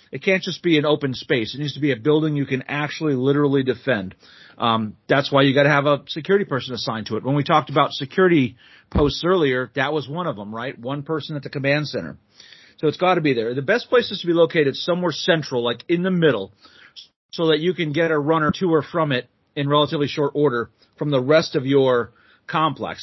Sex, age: male, 40-59